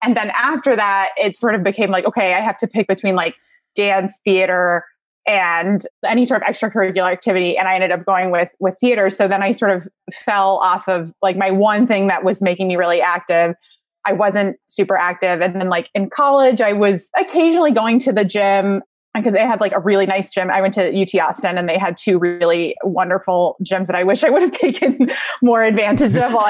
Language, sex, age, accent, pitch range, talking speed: English, female, 20-39, American, 190-235 Hz, 220 wpm